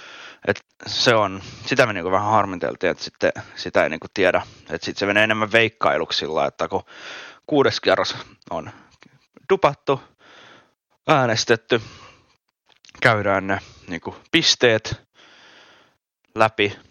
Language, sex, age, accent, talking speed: Finnish, male, 20-39, native, 105 wpm